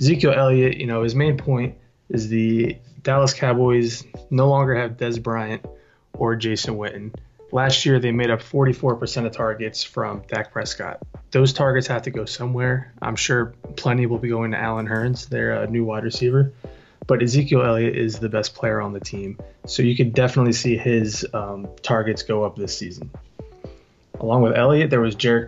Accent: American